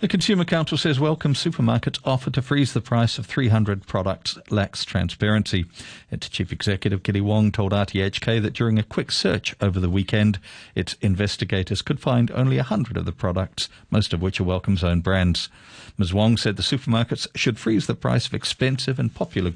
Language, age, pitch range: English, 50-69, 100-120 Hz